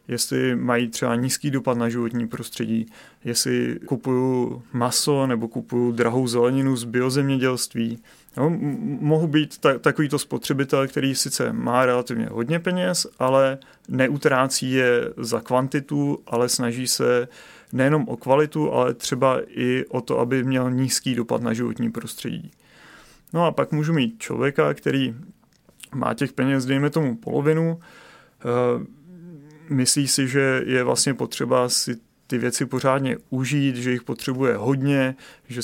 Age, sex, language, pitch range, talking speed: 30-49, male, Czech, 120-135 Hz, 135 wpm